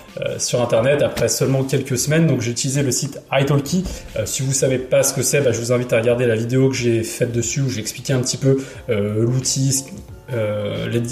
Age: 20-39